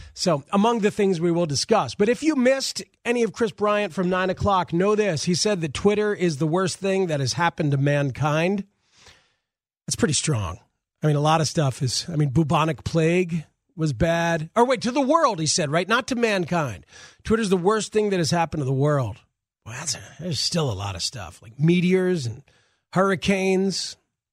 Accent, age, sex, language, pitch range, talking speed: American, 40-59, male, English, 155-205 Hz, 205 wpm